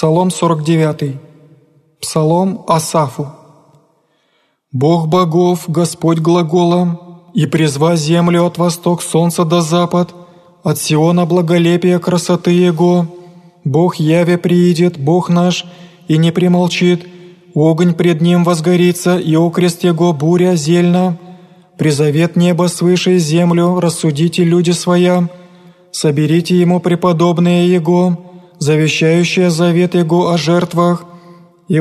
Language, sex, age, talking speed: Greek, male, 20-39, 105 wpm